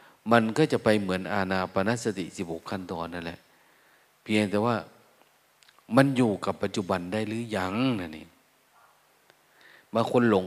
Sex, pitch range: male, 95-115 Hz